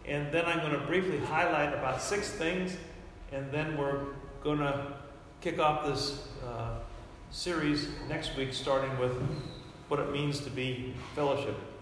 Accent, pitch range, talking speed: American, 130-165 Hz, 150 wpm